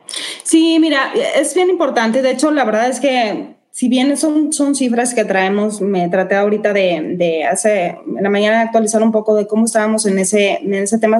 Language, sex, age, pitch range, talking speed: Spanish, female, 20-39, 200-270 Hz, 205 wpm